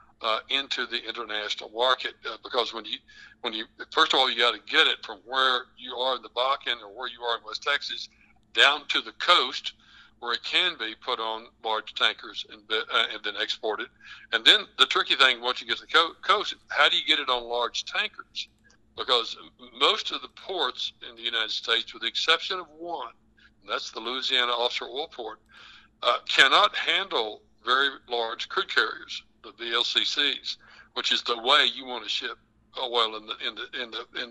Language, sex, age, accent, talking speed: English, male, 60-79, American, 205 wpm